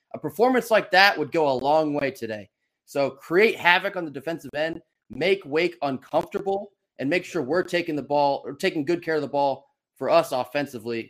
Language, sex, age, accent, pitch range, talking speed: English, male, 20-39, American, 140-185 Hz, 200 wpm